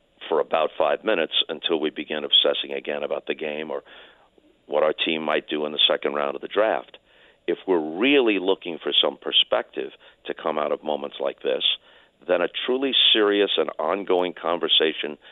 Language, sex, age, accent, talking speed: English, male, 50-69, American, 180 wpm